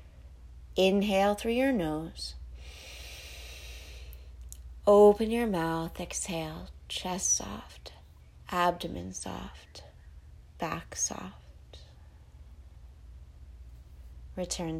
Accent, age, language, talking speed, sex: American, 30-49, English, 60 wpm, female